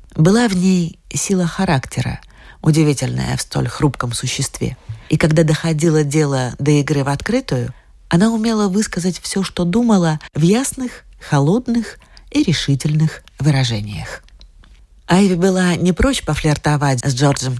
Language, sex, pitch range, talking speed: Russian, female, 135-180 Hz, 125 wpm